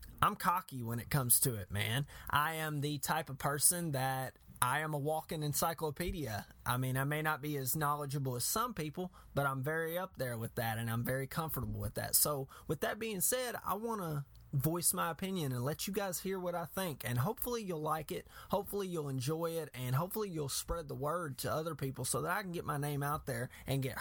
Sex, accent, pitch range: male, American, 135-180 Hz